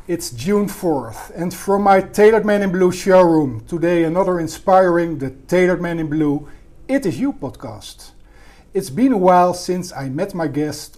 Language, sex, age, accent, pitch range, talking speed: Dutch, male, 50-69, Dutch, 145-195 Hz, 175 wpm